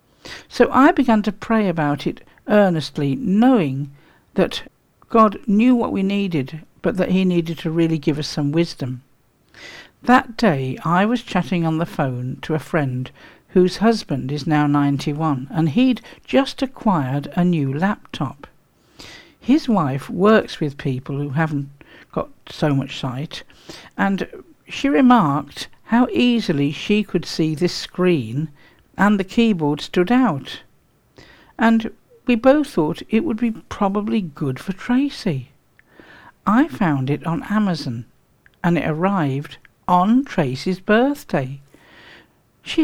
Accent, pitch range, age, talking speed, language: British, 145-215 Hz, 60-79, 135 wpm, English